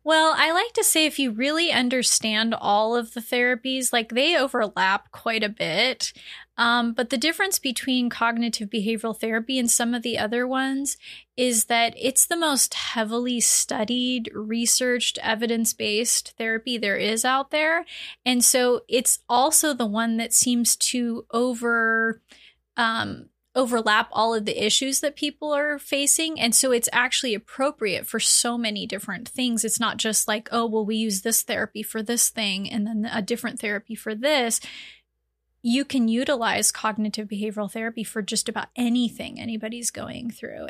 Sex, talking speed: female, 160 wpm